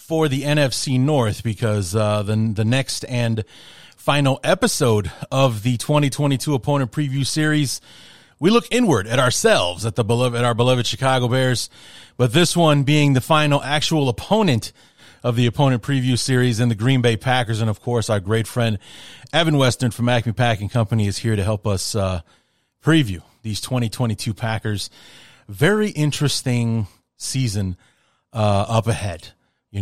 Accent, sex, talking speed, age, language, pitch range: American, male, 155 wpm, 30-49, English, 110-135 Hz